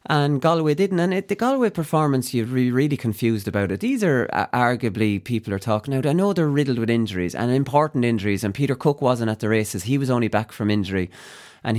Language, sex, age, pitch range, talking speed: English, male, 30-49, 115-170 Hz, 230 wpm